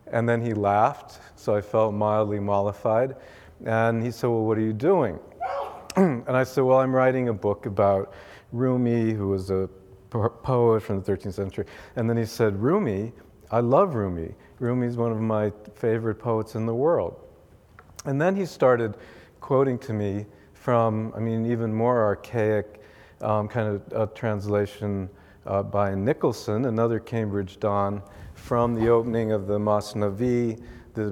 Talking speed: 160 wpm